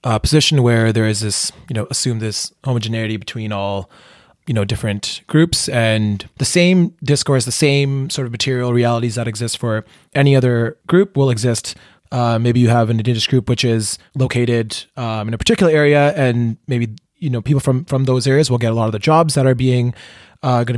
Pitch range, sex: 115-135 Hz, male